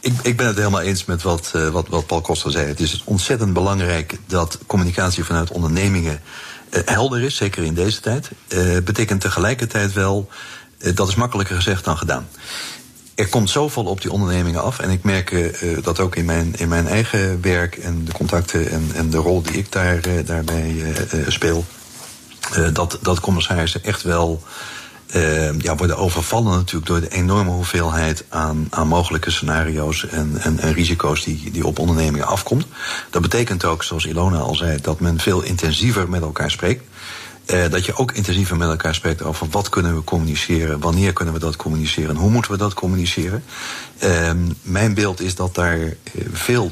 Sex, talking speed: male, 180 wpm